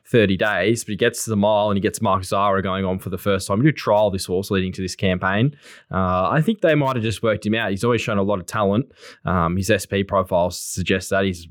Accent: Australian